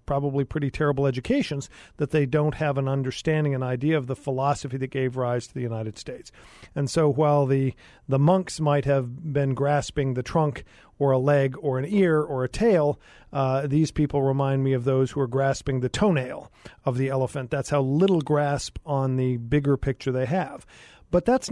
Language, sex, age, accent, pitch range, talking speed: English, male, 40-59, American, 130-150 Hz, 195 wpm